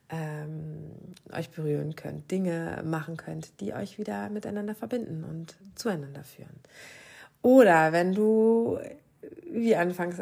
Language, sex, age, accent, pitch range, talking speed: German, female, 30-49, German, 160-225 Hz, 110 wpm